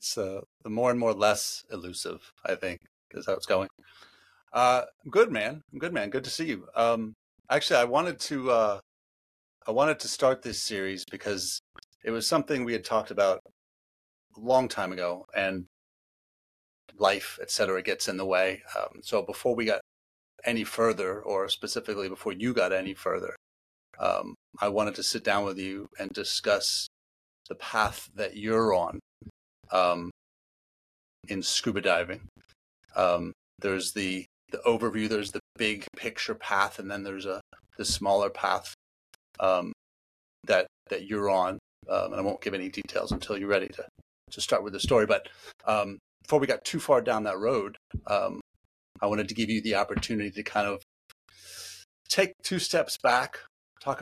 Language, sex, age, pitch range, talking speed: English, male, 30-49, 90-115 Hz, 170 wpm